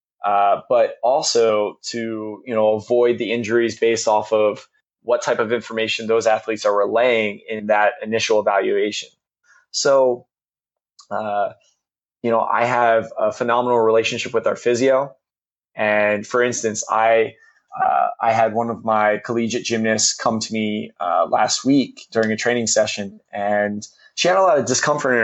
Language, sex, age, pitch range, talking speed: English, male, 20-39, 105-120 Hz, 155 wpm